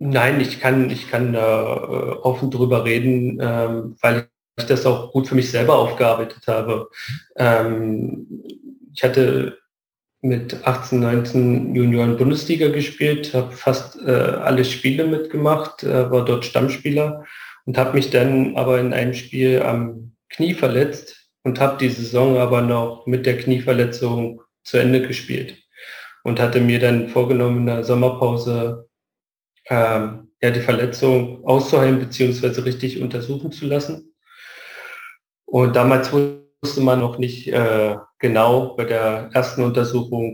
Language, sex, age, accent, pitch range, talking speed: German, male, 40-59, German, 120-135 Hz, 130 wpm